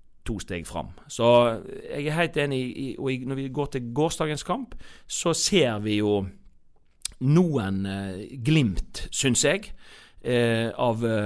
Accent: Swedish